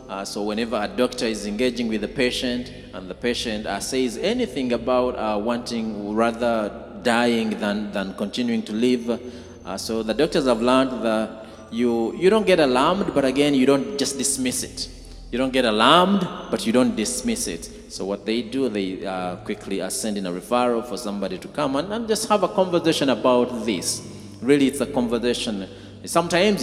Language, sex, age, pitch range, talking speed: English, male, 30-49, 115-155 Hz, 185 wpm